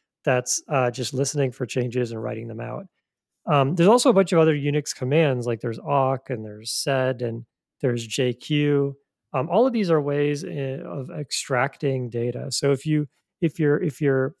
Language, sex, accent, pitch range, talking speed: English, male, American, 125-150 Hz, 180 wpm